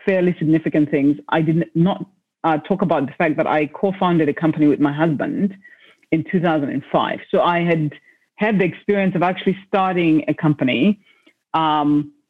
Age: 40-59